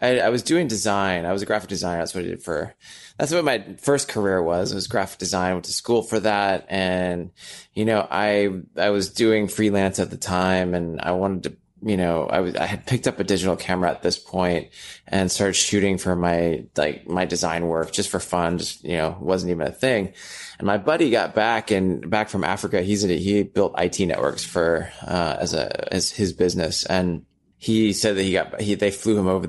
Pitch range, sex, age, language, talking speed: 90-105 Hz, male, 20-39, English, 230 wpm